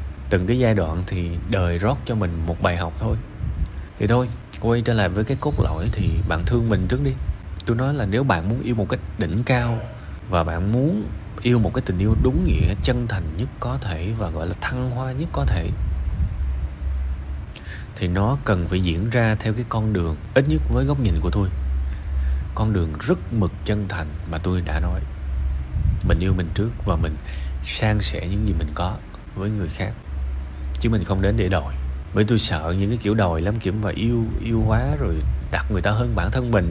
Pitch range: 85-115 Hz